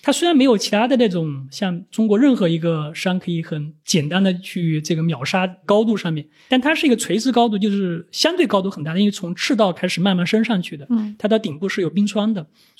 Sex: male